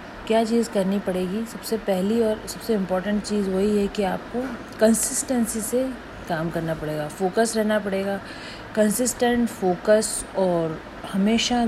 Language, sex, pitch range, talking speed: Hindi, female, 180-220 Hz, 135 wpm